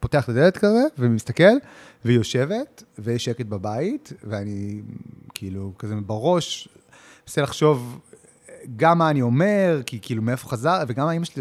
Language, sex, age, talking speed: Hebrew, male, 30-49, 140 wpm